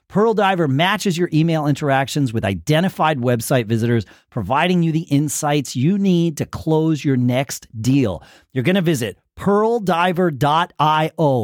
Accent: American